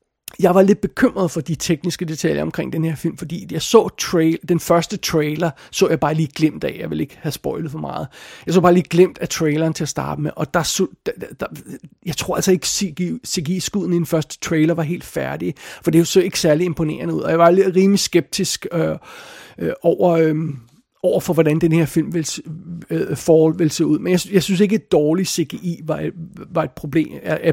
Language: Danish